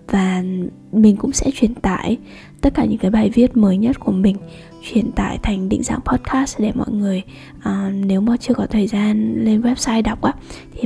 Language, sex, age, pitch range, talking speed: Vietnamese, female, 10-29, 195-240 Hz, 200 wpm